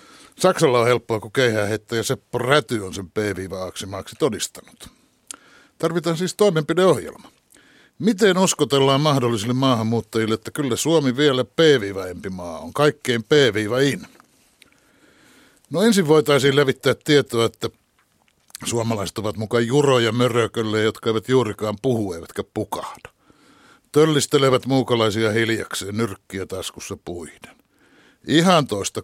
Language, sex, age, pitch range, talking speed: Finnish, male, 60-79, 110-150 Hz, 110 wpm